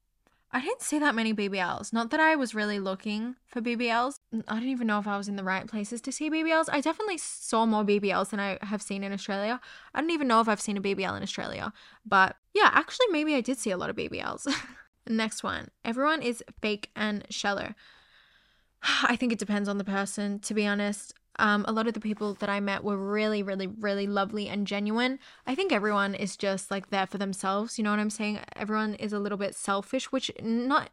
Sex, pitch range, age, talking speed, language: female, 200-250 Hz, 10-29, 225 wpm, English